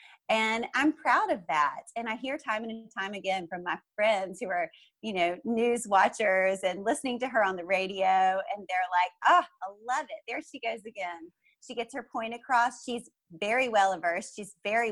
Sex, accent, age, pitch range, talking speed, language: female, American, 30-49, 185-230 Hz, 200 wpm, English